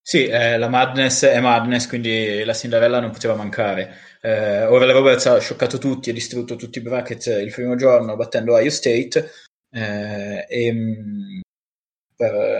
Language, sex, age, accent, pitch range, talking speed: Italian, male, 20-39, native, 120-190 Hz, 155 wpm